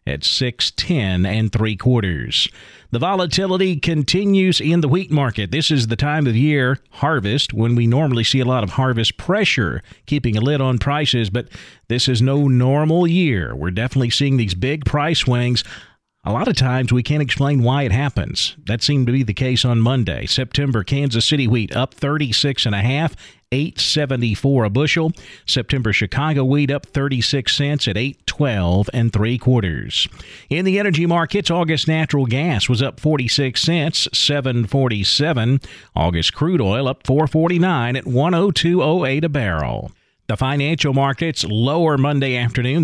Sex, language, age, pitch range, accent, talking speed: male, English, 40-59, 115-150 Hz, American, 165 wpm